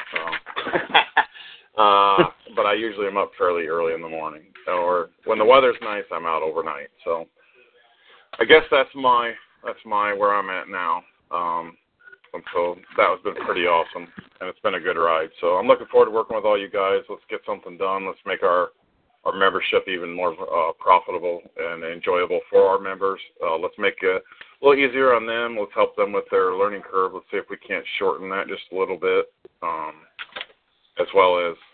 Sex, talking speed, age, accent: male, 195 wpm, 40-59, American